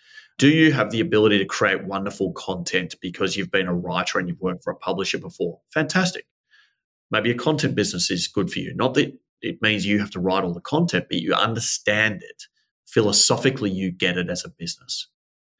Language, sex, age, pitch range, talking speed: English, male, 30-49, 95-155 Hz, 200 wpm